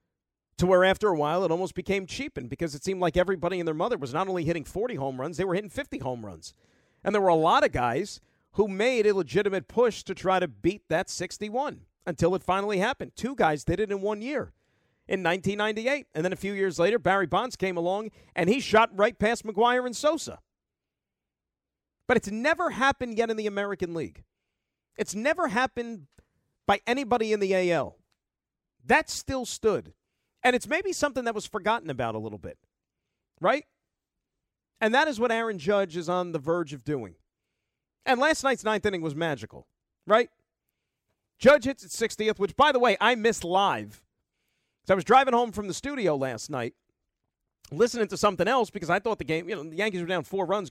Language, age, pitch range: English, 40-59, 170-225 Hz